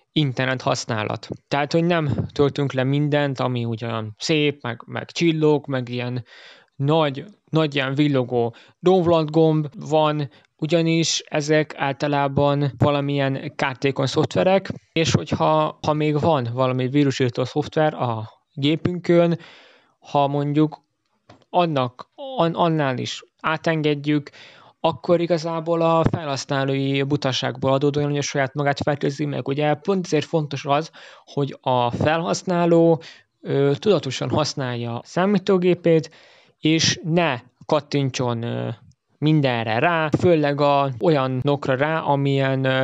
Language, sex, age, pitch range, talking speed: Hungarian, male, 20-39, 135-165 Hz, 110 wpm